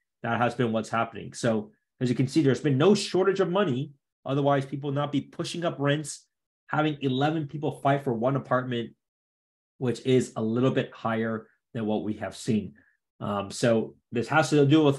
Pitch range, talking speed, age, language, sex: 120-160 Hz, 195 wpm, 30-49, English, male